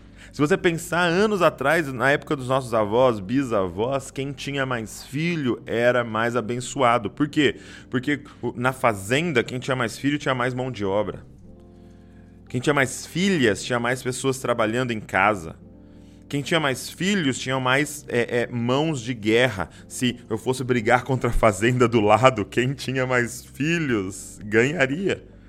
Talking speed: 155 wpm